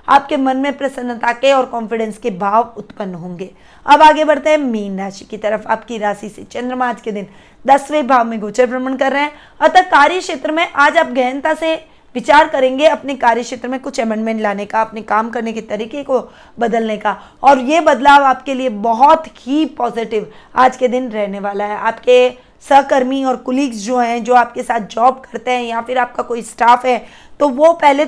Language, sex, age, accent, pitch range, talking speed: Hindi, female, 20-39, native, 230-280 Hz, 205 wpm